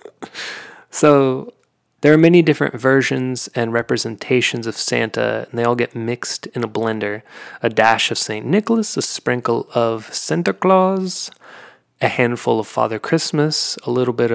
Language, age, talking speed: English, 30-49, 150 wpm